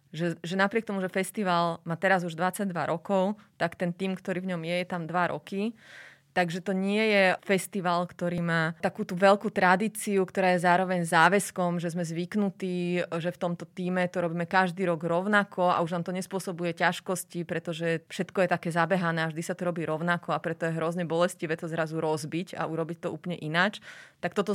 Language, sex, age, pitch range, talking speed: Slovak, female, 30-49, 165-185 Hz, 195 wpm